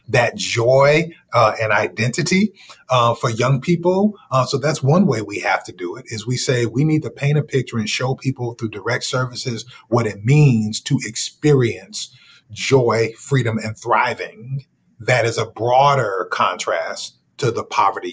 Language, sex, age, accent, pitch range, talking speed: English, male, 30-49, American, 110-140 Hz, 170 wpm